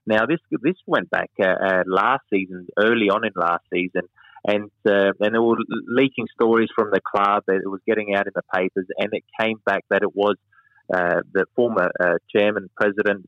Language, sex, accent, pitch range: English, male, Australian, 100-115 Hz